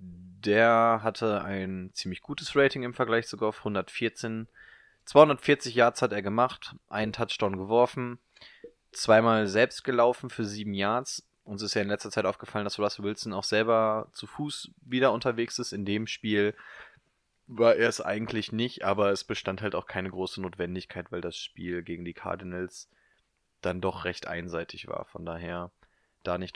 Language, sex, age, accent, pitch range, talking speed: German, male, 20-39, German, 100-120 Hz, 165 wpm